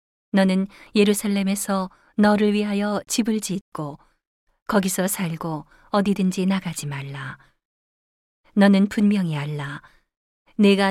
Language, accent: Korean, native